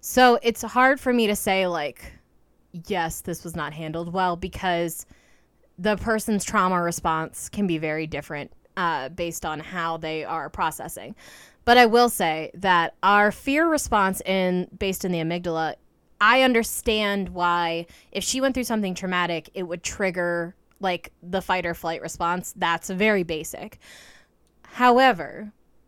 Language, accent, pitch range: English, American, 170-210 Hz